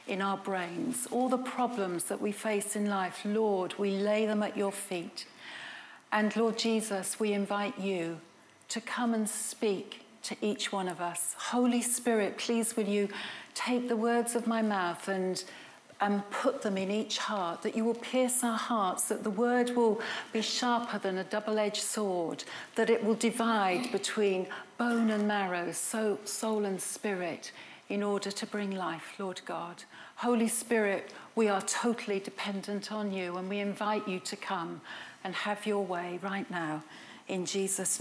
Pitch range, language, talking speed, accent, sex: 195-230 Hz, English, 170 wpm, British, female